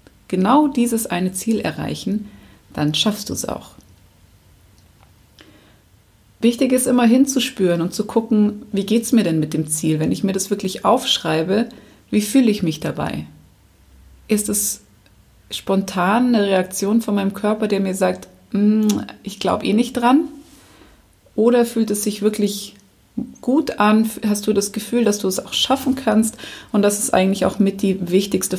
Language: German